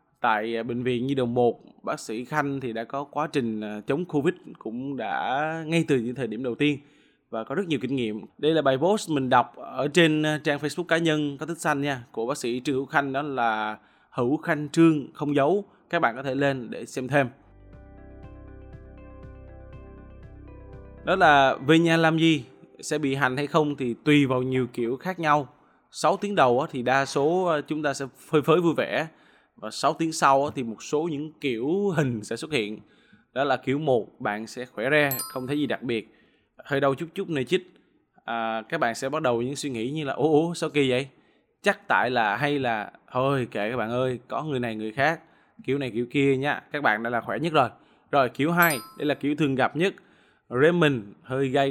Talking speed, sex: 215 wpm, male